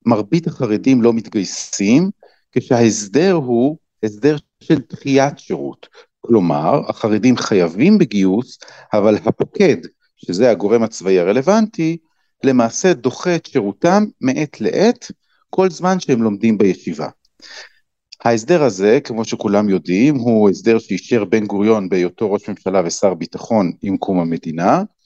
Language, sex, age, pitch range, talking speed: Hebrew, male, 50-69, 110-160 Hz, 115 wpm